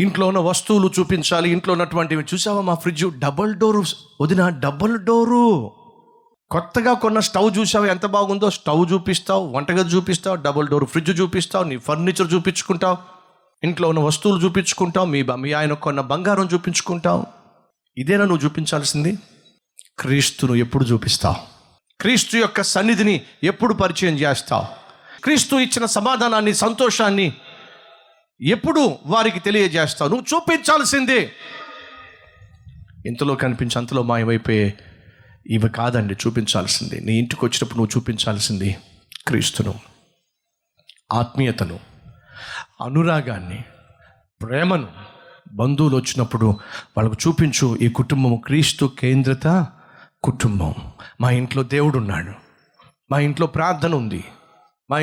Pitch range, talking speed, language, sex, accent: 125-190 Hz, 105 wpm, Telugu, male, native